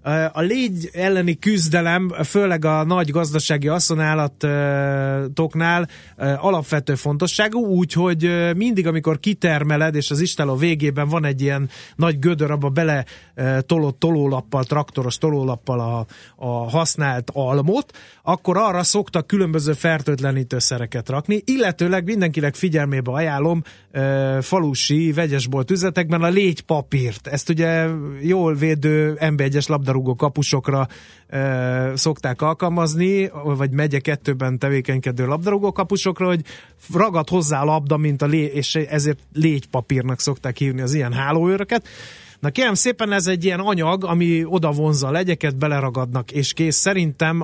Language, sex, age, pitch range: Hungarian, male, 30-49, 140-170 Hz